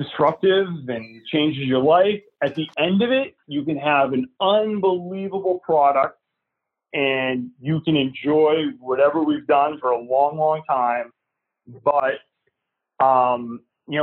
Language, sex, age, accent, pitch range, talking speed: English, male, 30-49, American, 130-185 Hz, 135 wpm